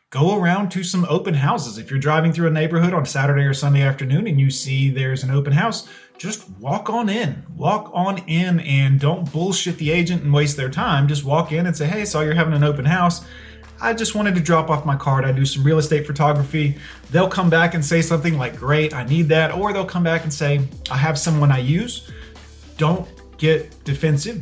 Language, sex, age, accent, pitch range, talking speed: English, male, 30-49, American, 140-160 Hz, 225 wpm